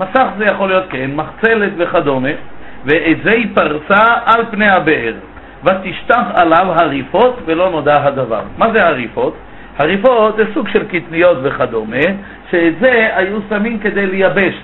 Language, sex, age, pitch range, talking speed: Hebrew, male, 50-69, 170-225 Hz, 145 wpm